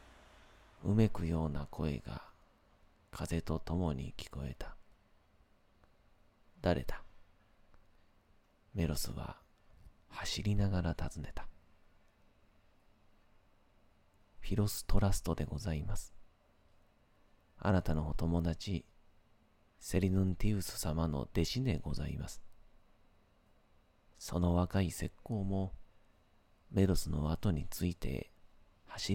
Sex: male